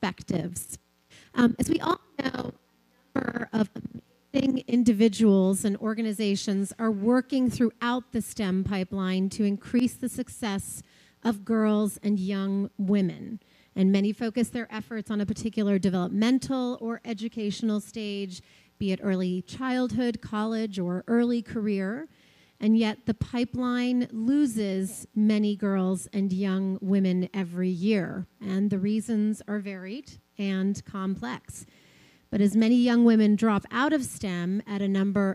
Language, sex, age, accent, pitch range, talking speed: English, female, 30-49, American, 195-240 Hz, 130 wpm